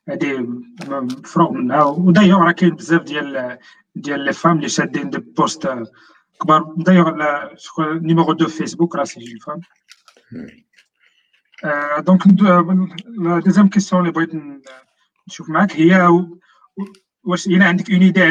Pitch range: 150-185 Hz